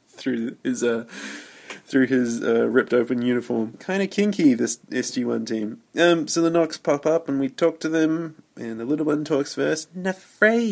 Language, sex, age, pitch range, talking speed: English, male, 20-39, 115-155 Hz, 180 wpm